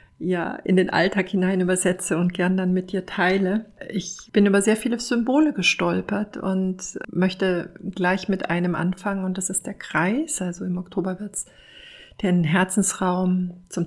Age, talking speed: 50-69, 160 wpm